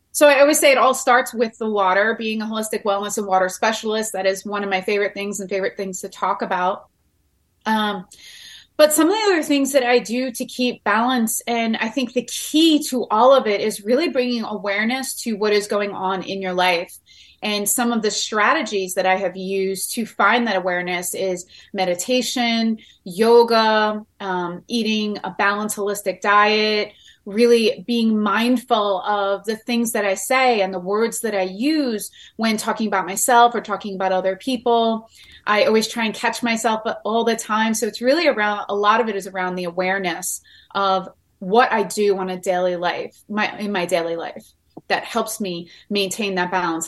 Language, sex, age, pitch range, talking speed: English, female, 30-49, 195-235 Hz, 190 wpm